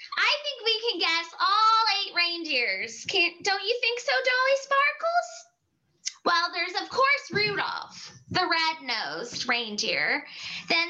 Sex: female